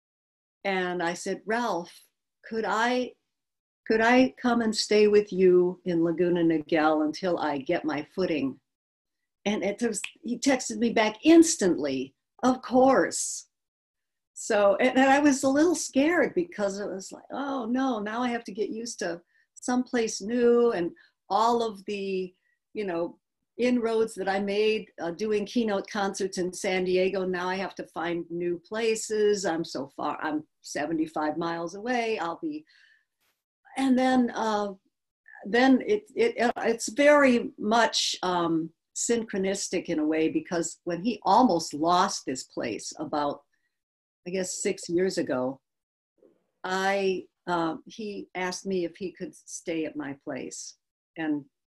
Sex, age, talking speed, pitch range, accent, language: female, 60-79, 145 wpm, 175-240 Hz, American, English